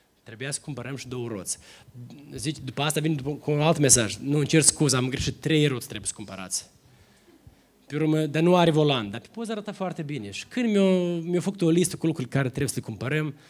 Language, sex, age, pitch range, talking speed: Romanian, male, 20-39, 125-175 Hz, 210 wpm